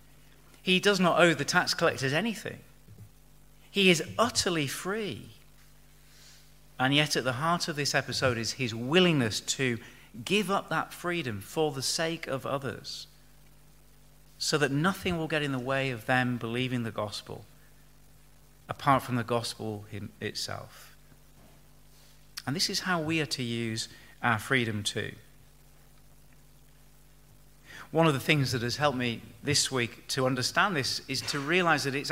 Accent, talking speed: British, 150 wpm